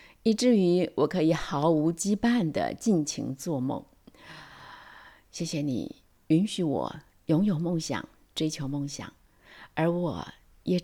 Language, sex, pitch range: Chinese, female, 130-185 Hz